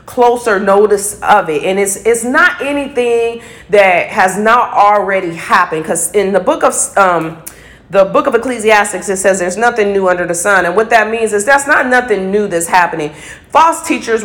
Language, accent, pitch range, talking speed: English, American, 185-240 Hz, 190 wpm